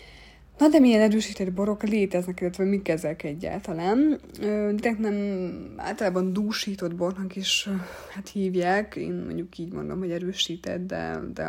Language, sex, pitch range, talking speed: Hungarian, female, 165-195 Hz, 135 wpm